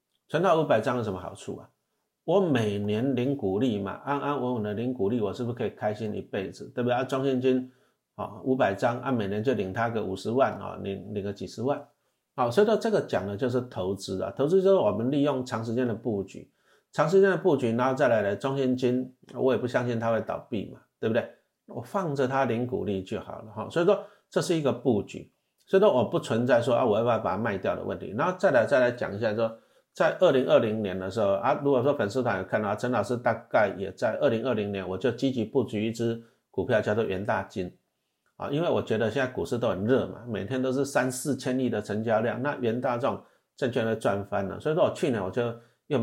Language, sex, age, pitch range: Chinese, male, 50-69, 105-130 Hz